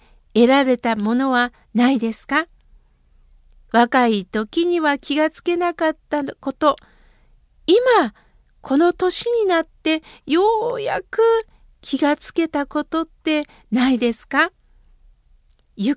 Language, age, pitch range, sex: Japanese, 60-79, 240-330 Hz, female